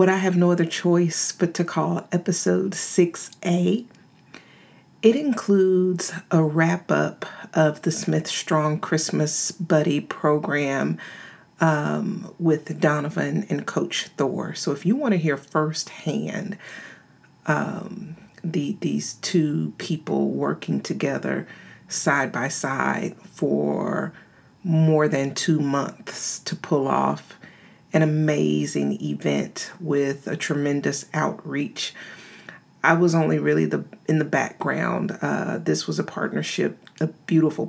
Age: 40-59